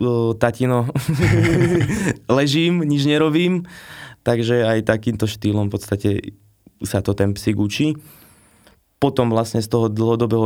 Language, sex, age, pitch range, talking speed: Slovak, male, 20-39, 105-120 Hz, 110 wpm